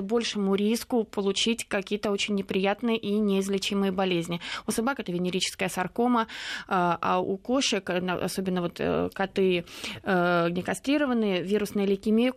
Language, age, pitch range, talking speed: Russian, 20-39, 195-220 Hz, 110 wpm